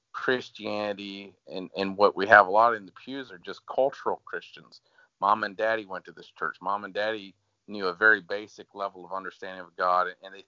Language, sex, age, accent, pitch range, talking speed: English, male, 40-59, American, 95-110 Hz, 205 wpm